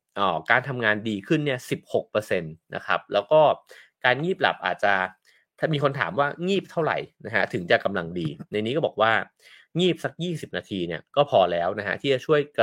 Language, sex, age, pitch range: English, male, 30-49, 105-155 Hz